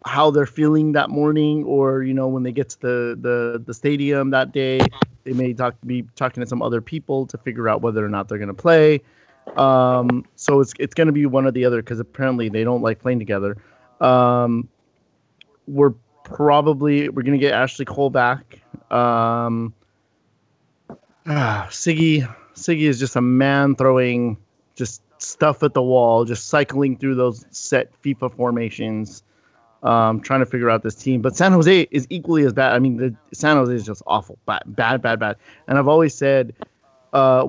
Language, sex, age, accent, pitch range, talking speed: English, male, 30-49, American, 120-145 Hz, 190 wpm